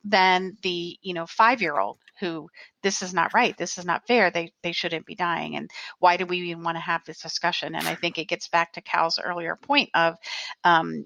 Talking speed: 225 wpm